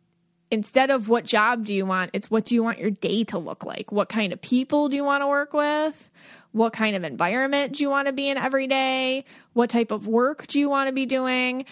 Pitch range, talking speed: 210-275 Hz, 250 wpm